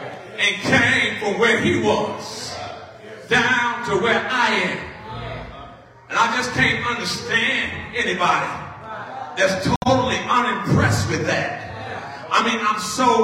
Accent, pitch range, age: American, 210-255 Hz, 40-59